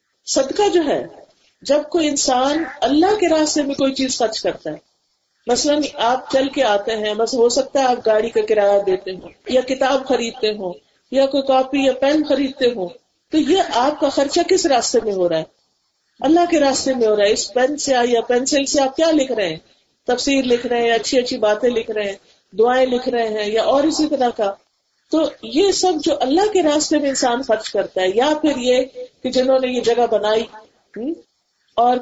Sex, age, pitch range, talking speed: female, 50-69, 235-290 Hz, 200 wpm